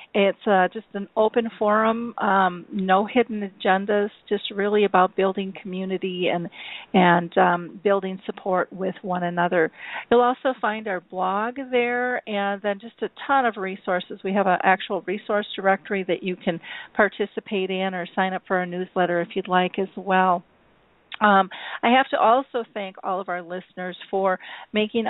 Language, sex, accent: English, female, American